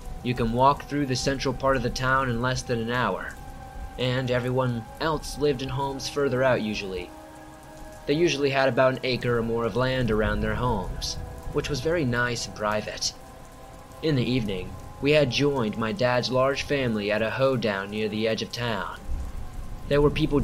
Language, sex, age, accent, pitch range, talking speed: English, male, 20-39, American, 110-130 Hz, 190 wpm